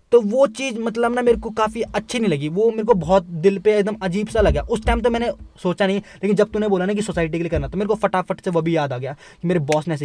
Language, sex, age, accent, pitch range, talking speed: Hindi, male, 20-39, native, 155-205 Hz, 310 wpm